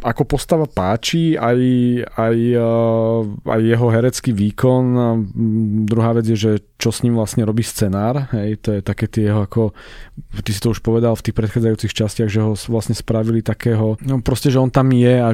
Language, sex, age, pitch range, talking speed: Slovak, male, 20-39, 110-130 Hz, 185 wpm